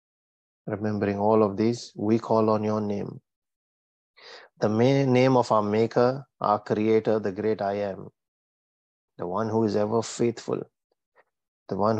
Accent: Indian